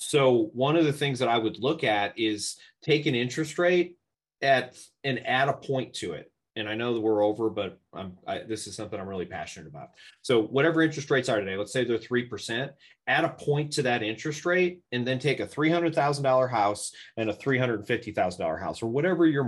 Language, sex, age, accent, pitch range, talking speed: English, male, 30-49, American, 115-160 Hz, 210 wpm